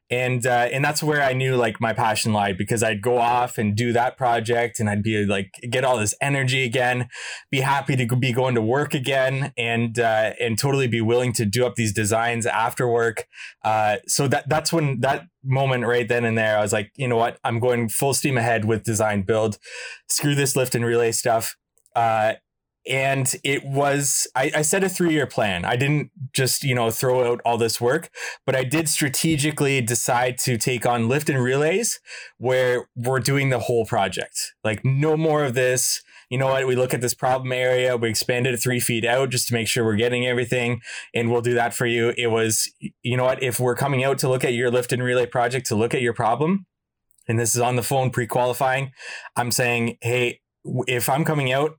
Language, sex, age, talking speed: English, male, 20-39, 215 wpm